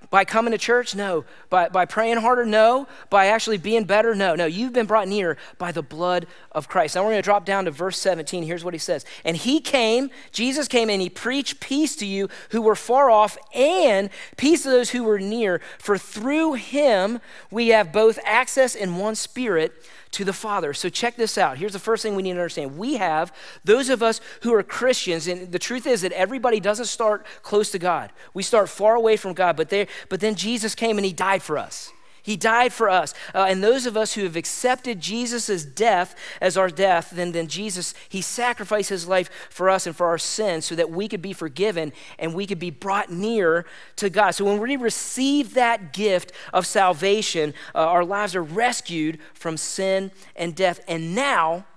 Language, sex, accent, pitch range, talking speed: English, male, American, 175-230 Hz, 210 wpm